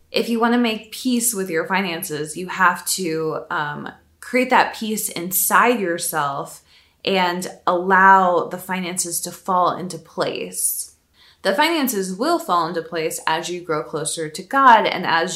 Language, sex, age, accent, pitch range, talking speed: English, female, 20-39, American, 170-230 Hz, 155 wpm